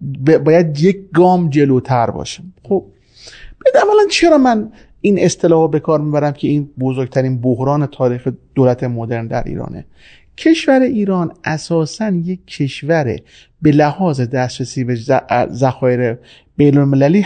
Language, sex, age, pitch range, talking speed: Persian, male, 30-49, 130-175 Hz, 120 wpm